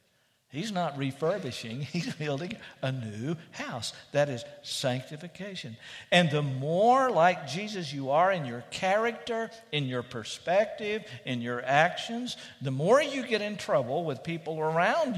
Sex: male